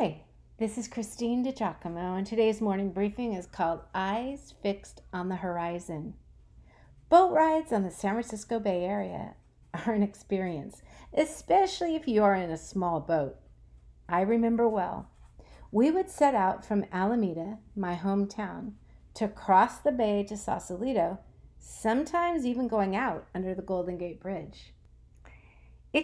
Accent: American